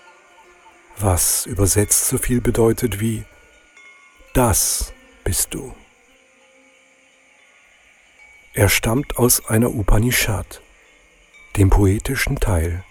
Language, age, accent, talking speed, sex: German, 60-79, German, 80 wpm, male